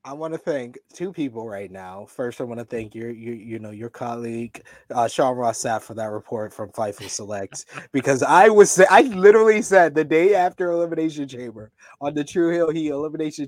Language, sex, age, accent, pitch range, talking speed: English, male, 20-39, American, 155-205 Hz, 205 wpm